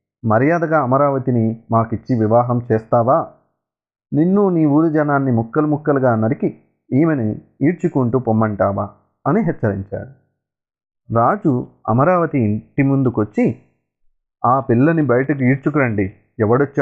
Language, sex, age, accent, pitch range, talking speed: Telugu, male, 30-49, native, 110-150 Hz, 95 wpm